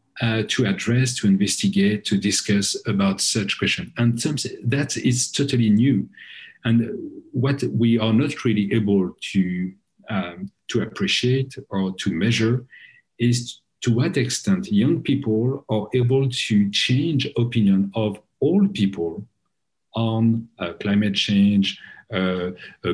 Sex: male